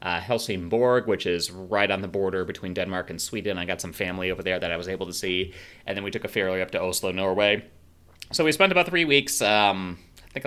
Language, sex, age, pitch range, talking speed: English, male, 30-49, 85-105 Hz, 245 wpm